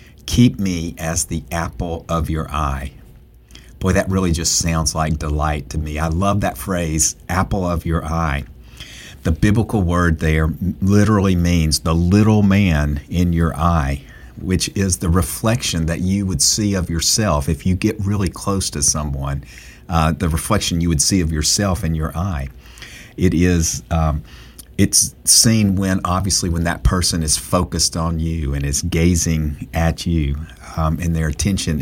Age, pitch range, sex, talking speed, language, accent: 50-69, 75-95 Hz, male, 165 wpm, English, American